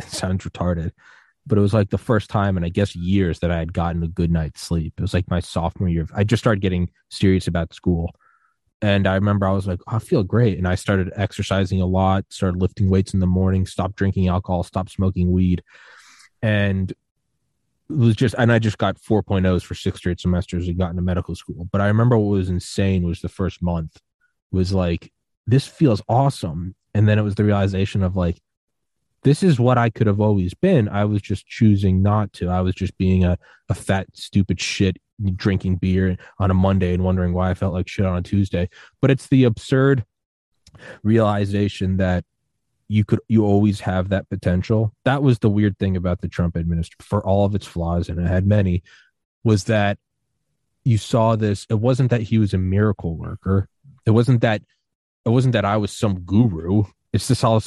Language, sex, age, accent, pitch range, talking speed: English, male, 20-39, American, 90-110 Hz, 210 wpm